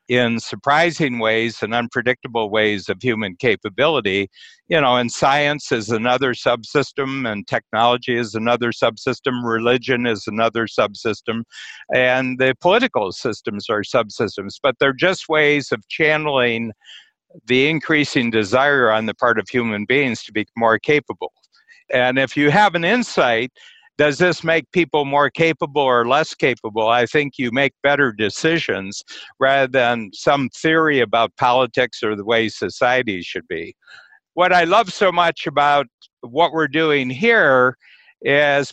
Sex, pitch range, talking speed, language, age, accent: male, 115-150 Hz, 145 wpm, English, 60-79, American